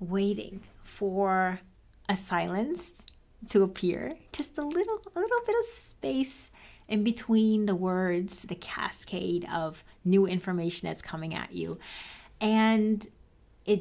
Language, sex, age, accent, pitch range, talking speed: English, female, 30-49, American, 175-220 Hz, 125 wpm